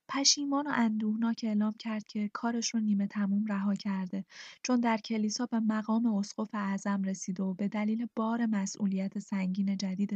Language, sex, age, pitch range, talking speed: Persian, female, 10-29, 200-235 Hz, 160 wpm